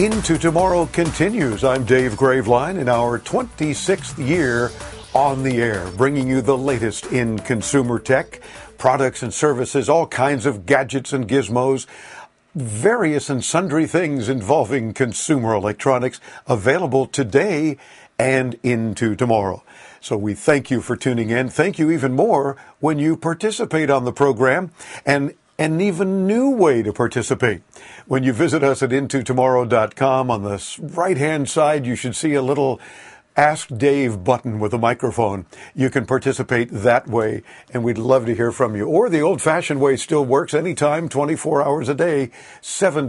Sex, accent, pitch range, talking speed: male, American, 120-150 Hz, 155 wpm